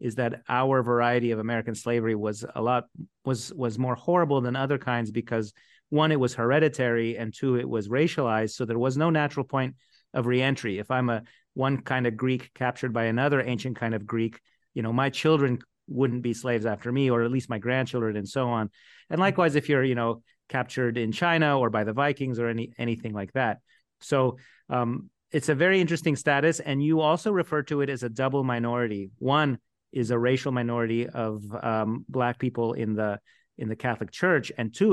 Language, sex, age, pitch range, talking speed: English, male, 30-49, 115-135 Hz, 205 wpm